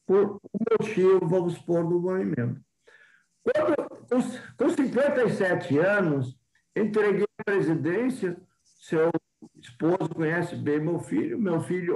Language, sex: Portuguese, male